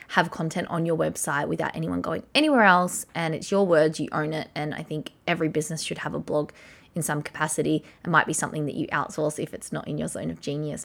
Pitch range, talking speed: 150-185 Hz, 245 wpm